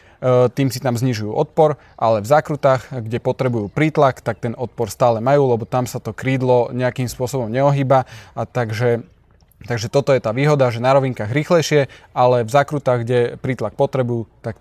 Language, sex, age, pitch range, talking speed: Slovak, male, 20-39, 120-140 Hz, 175 wpm